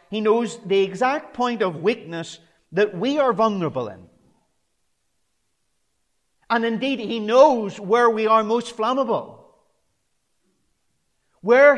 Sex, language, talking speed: male, English, 110 wpm